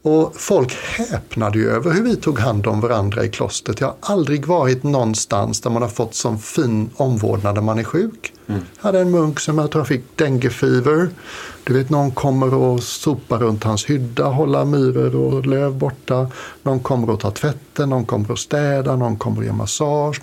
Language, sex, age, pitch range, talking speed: English, male, 60-79, 115-145 Hz, 190 wpm